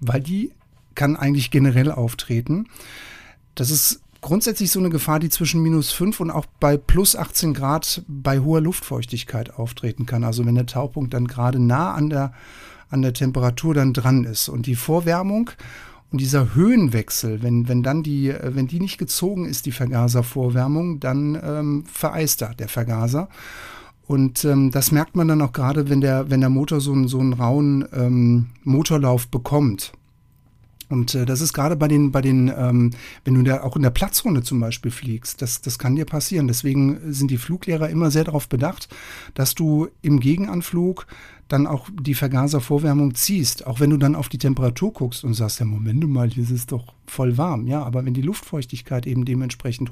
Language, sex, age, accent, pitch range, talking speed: German, male, 60-79, German, 125-150 Hz, 185 wpm